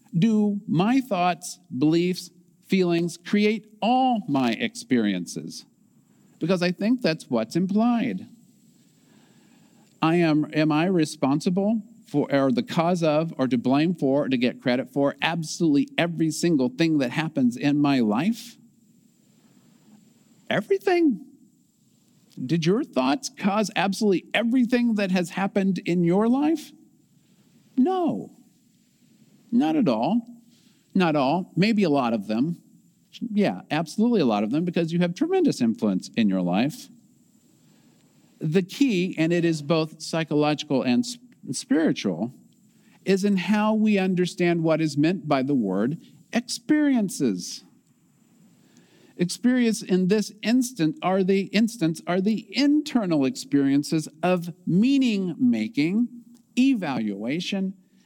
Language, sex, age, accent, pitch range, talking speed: English, male, 50-69, American, 165-230 Hz, 120 wpm